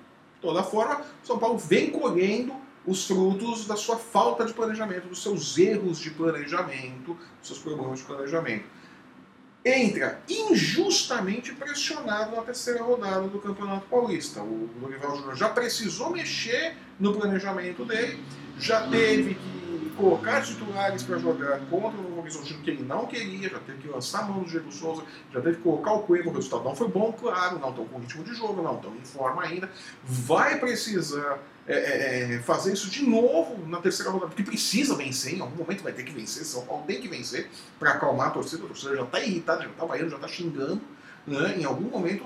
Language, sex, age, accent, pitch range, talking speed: Portuguese, male, 40-59, Brazilian, 165-240 Hz, 185 wpm